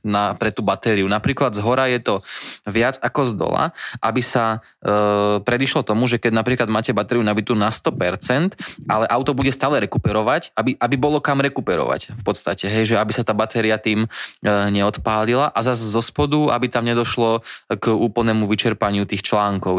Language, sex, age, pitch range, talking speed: Slovak, male, 20-39, 105-120 Hz, 180 wpm